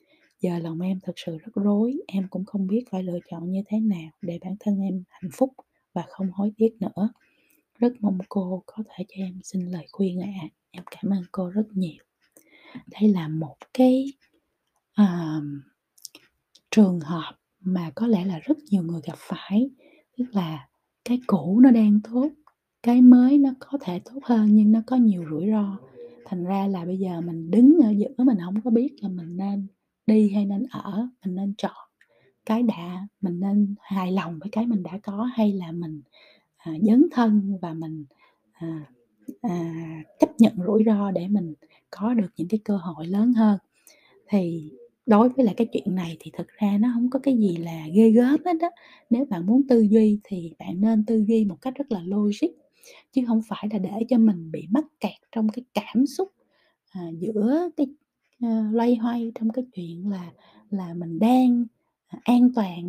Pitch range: 185-235 Hz